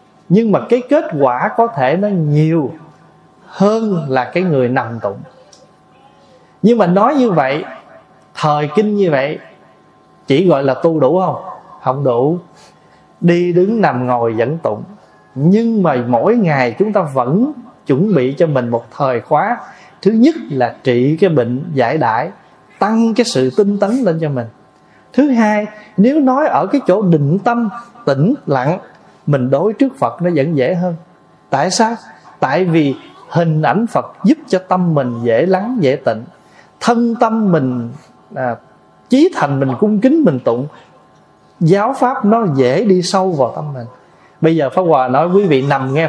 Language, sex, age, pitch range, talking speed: Vietnamese, male, 20-39, 145-215 Hz, 170 wpm